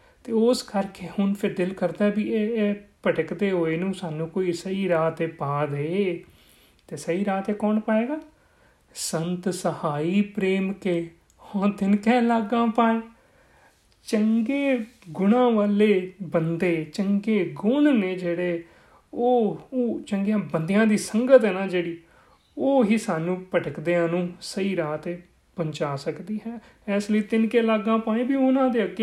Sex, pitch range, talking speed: male, 175-225 Hz, 125 wpm